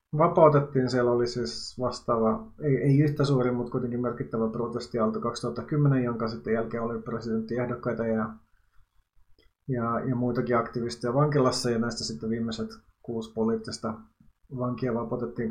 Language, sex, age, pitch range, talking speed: Finnish, male, 30-49, 115-140 Hz, 130 wpm